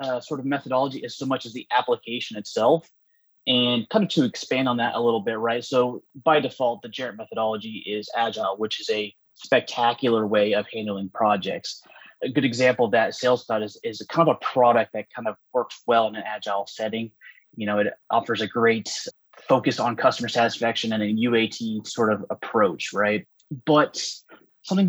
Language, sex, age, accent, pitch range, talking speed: English, male, 20-39, American, 110-125 Hz, 190 wpm